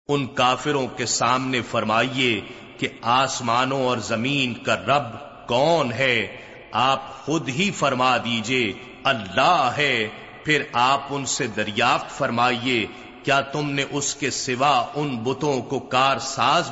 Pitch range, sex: 125-145 Hz, male